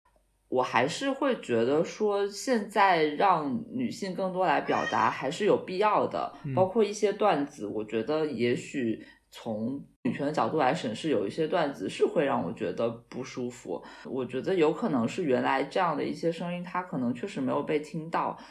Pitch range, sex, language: 130-205 Hz, female, Chinese